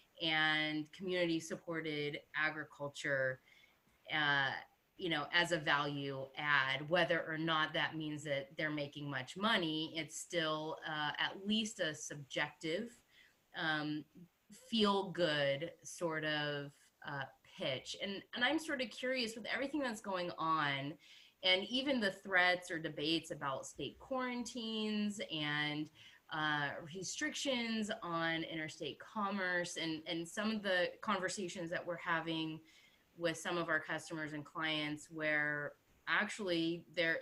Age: 20-39